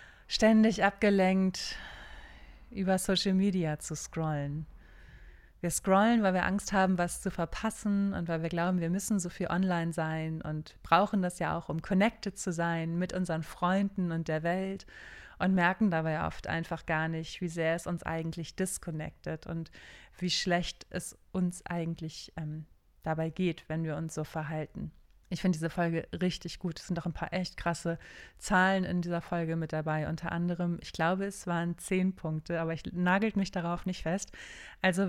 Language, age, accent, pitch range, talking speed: German, 30-49, German, 165-195 Hz, 175 wpm